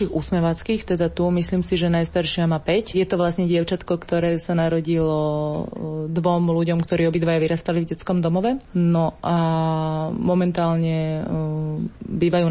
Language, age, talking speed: Slovak, 30-49, 135 wpm